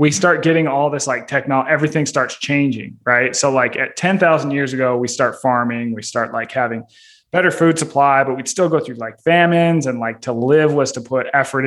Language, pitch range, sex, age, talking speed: English, 120-155 Hz, male, 20-39, 215 wpm